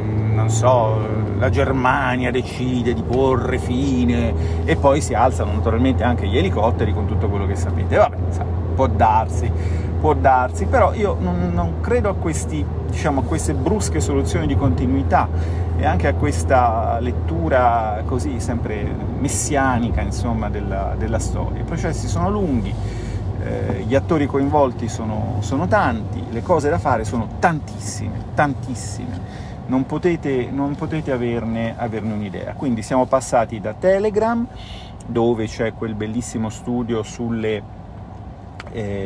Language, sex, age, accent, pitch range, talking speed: Italian, male, 40-59, native, 95-120 Hz, 140 wpm